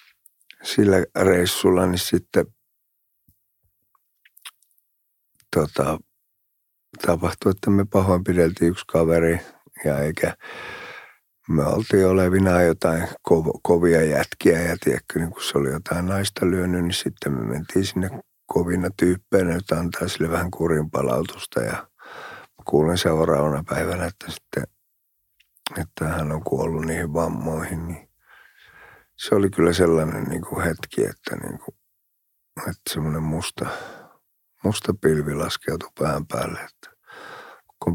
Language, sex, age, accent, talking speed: Finnish, male, 50-69, native, 115 wpm